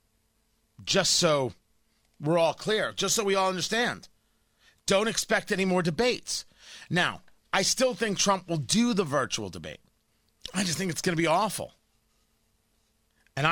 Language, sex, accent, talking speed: English, male, American, 150 wpm